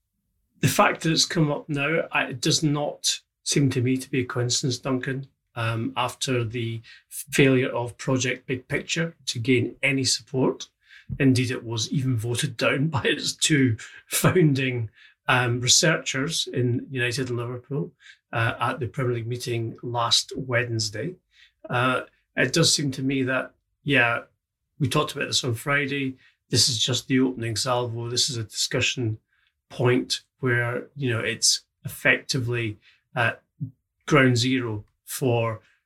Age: 30-49